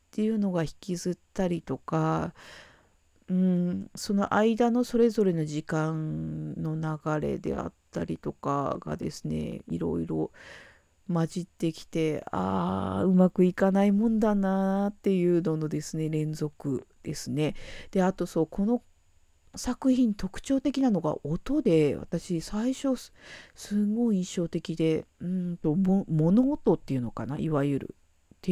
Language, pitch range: Japanese, 150-200 Hz